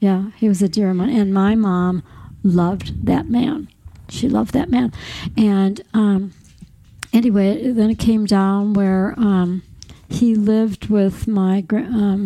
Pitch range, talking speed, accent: 195-220 Hz, 150 wpm, American